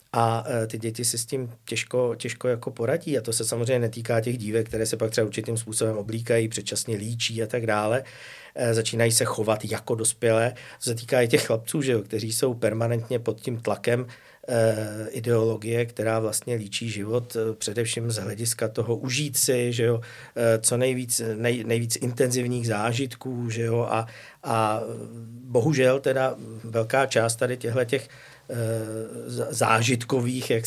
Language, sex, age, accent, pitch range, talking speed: Czech, male, 50-69, native, 115-125 Hz, 155 wpm